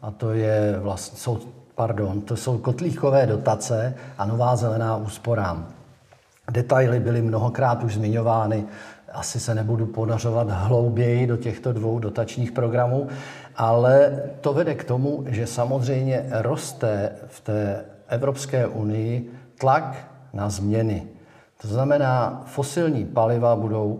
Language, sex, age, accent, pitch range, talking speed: Czech, male, 50-69, native, 110-130 Hz, 125 wpm